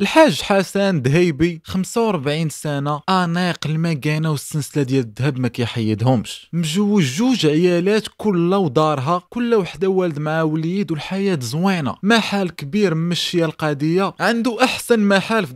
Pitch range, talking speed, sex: 140-195 Hz, 125 wpm, male